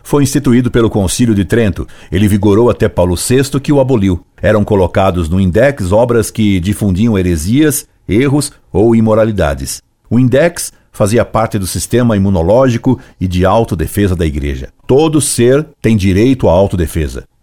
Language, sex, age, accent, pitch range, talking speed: Portuguese, male, 50-69, Brazilian, 90-120 Hz, 150 wpm